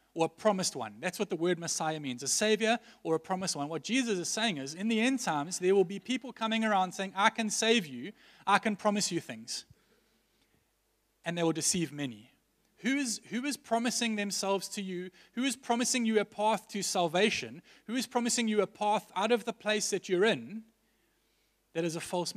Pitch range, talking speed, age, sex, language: 165-215 Hz, 210 wpm, 30-49, male, English